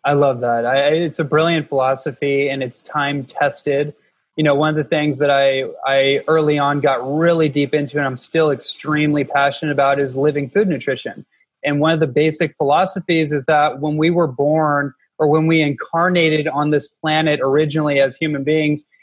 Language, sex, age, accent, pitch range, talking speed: English, male, 20-39, American, 140-155 Hz, 185 wpm